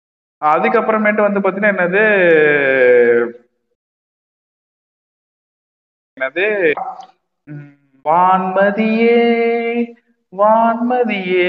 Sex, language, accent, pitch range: male, Tamil, native, 160-210 Hz